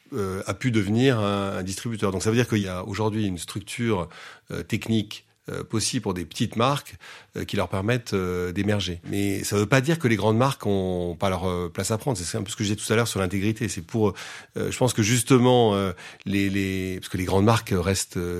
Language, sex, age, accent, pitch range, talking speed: English, male, 40-59, French, 95-120 Hz, 220 wpm